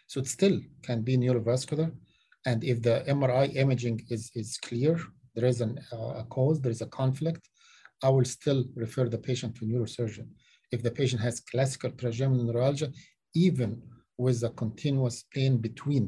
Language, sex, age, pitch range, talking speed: English, male, 50-69, 120-135 Hz, 170 wpm